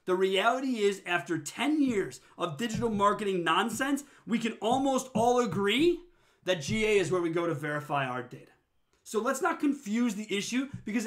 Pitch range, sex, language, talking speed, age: 165-225 Hz, male, English, 175 wpm, 30-49